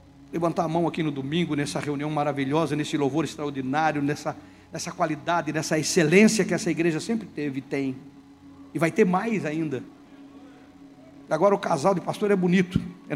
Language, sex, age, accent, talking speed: Portuguese, male, 60-79, Brazilian, 170 wpm